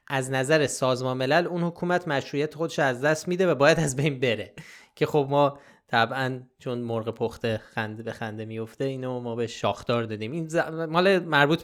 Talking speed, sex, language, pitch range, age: 185 wpm, male, Persian, 125-160 Hz, 20-39